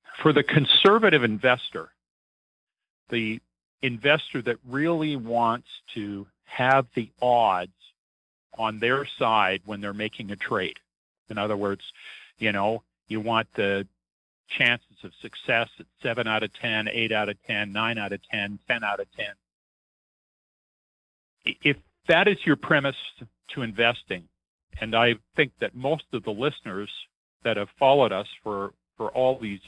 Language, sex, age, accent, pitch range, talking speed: English, male, 50-69, American, 100-125 Hz, 145 wpm